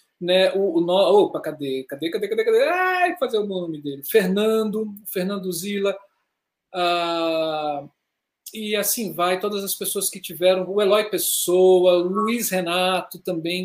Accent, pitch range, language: Brazilian, 165-205 Hz, Portuguese